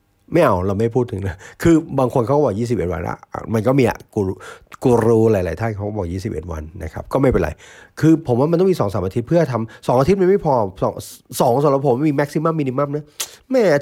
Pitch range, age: 100-140 Hz, 30-49